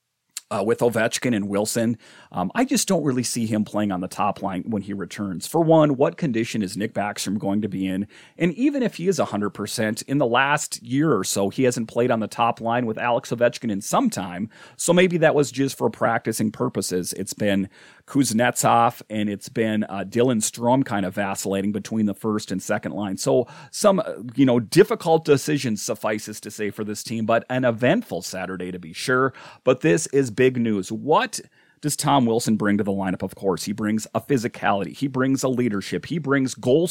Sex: male